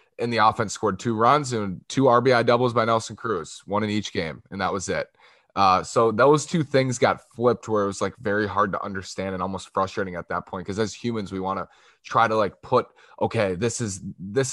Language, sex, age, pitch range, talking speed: English, male, 20-39, 95-115 Hz, 230 wpm